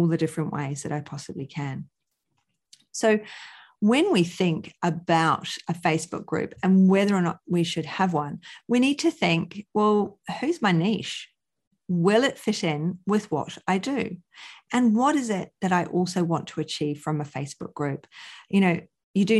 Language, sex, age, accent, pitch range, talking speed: English, female, 40-59, Australian, 160-200 Hz, 175 wpm